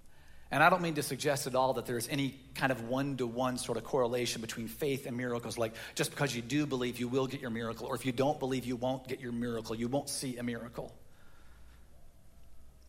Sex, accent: male, American